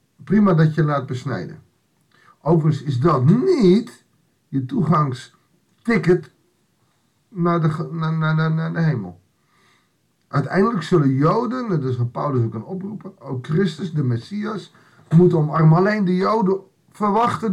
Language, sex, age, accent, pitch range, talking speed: Dutch, male, 50-69, Dutch, 130-180 Hz, 130 wpm